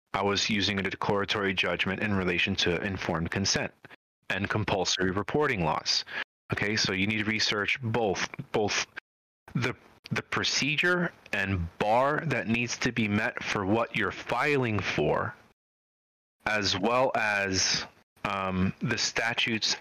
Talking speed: 135 wpm